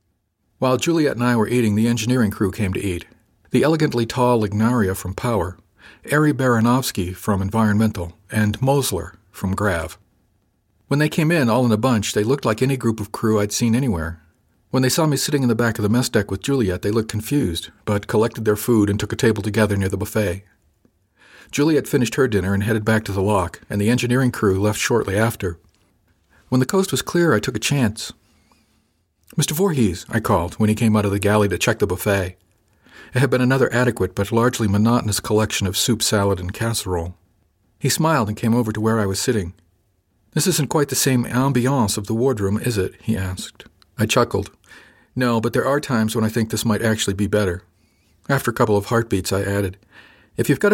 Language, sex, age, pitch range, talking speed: English, male, 50-69, 100-125 Hz, 210 wpm